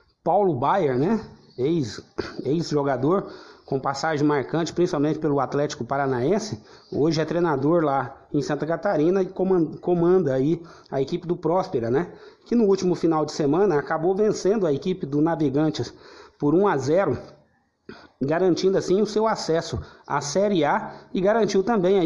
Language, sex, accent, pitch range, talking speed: Portuguese, male, Brazilian, 155-195 Hz, 140 wpm